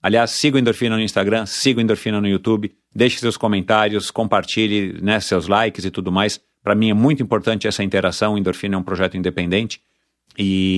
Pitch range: 95-110 Hz